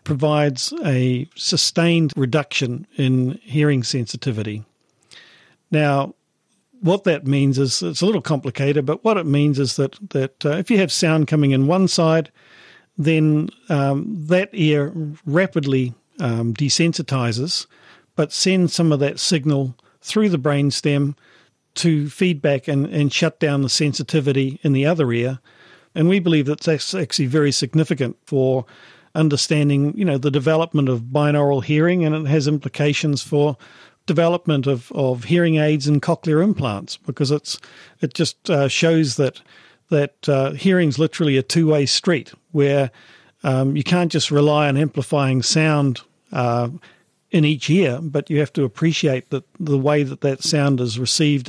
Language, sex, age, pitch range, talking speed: English, male, 50-69, 135-160 Hz, 150 wpm